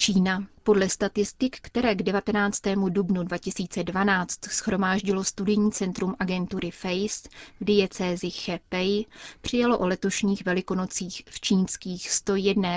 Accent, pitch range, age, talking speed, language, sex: native, 185-210 Hz, 30-49, 110 wpm, Czech, female